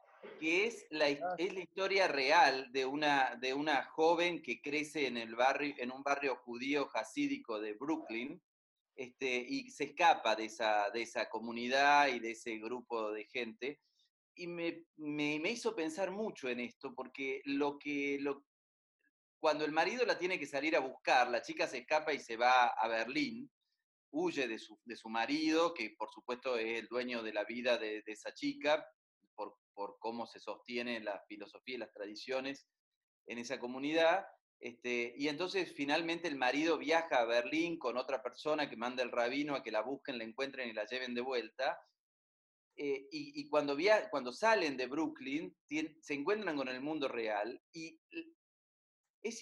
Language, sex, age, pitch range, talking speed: Spanish, male, 40-59, 125-175 Hz, 175 wpm